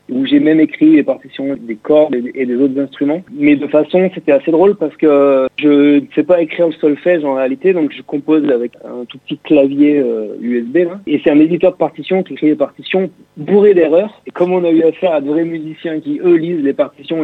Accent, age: French, 40-59